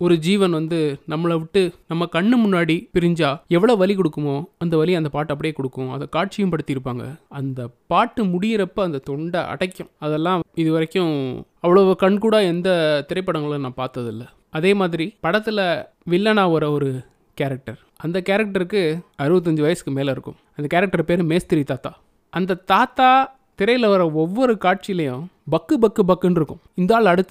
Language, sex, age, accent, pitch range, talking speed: Tamil, male, 20-39, native, 150-190 Hz, 145 wpm